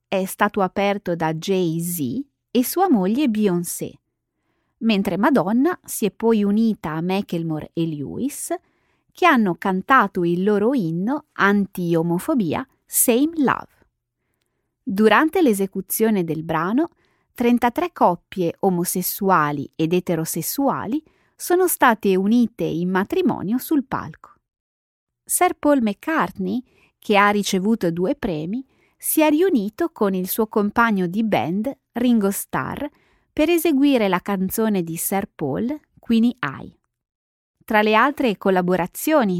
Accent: native